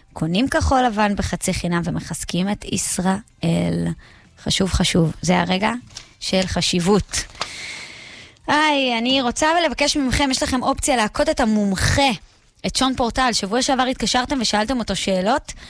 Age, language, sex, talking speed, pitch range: 20-39, Hebrew, female, 130 wpm, 180-245 Hz